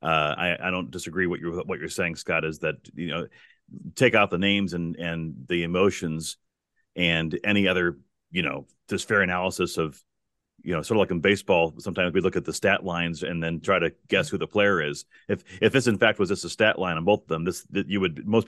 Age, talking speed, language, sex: 40-59, 240 wpm, English, male